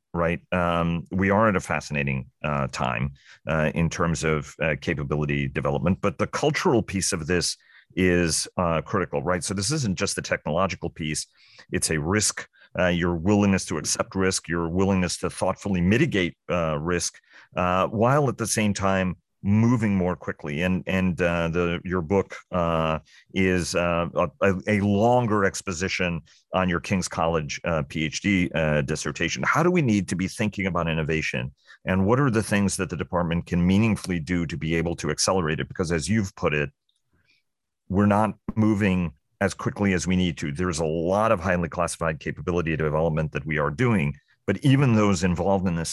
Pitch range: 80-100 Hz